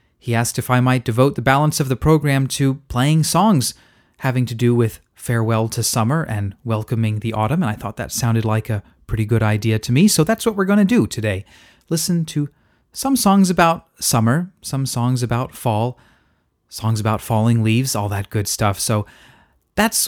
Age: 30-49